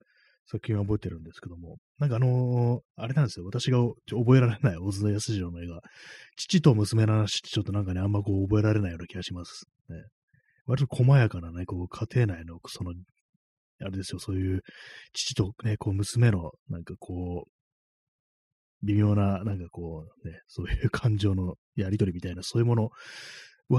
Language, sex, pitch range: Japanese, male, 90-125 Hz